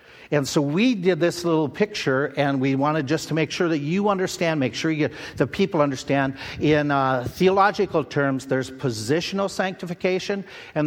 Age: 50-69